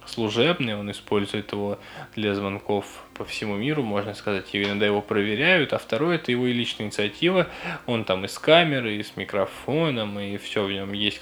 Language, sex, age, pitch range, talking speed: Russian, male, 10-29, 105-135 Hz, 185 wpm